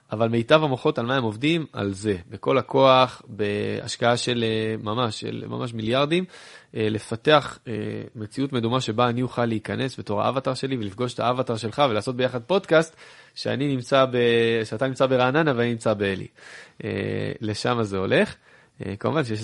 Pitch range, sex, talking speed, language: 105-130 Hz, male, 140 wpm, Hebrew